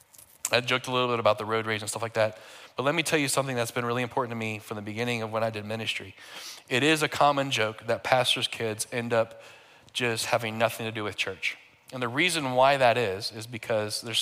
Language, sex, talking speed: English, male, 250 wpm